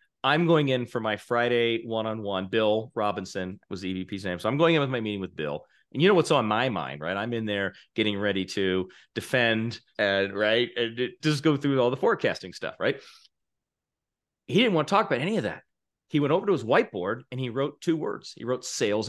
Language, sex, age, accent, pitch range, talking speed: English, male, 40-59, American, 105-140 Hz, 225 wpm